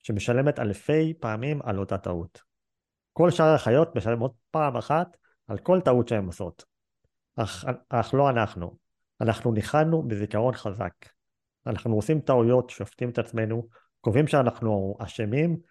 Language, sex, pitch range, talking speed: Hebrew, male, 100-140 Hz, 130 wpm